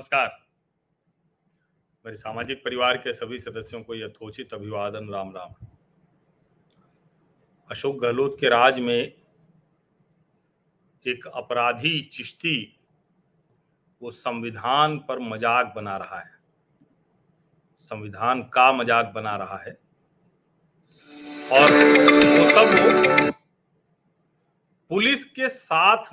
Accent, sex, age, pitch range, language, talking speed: native, male, 40-59, 125-170 Hz, Hindi, 95 wpm